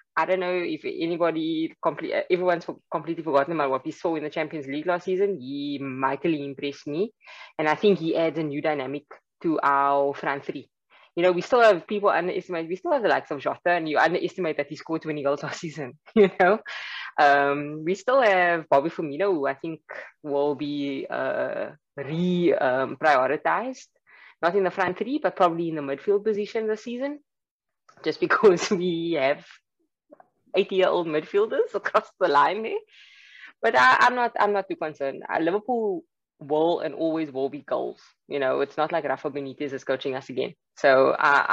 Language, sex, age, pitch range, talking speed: English, female, 20-39, 140-195 Hz, 180 wpm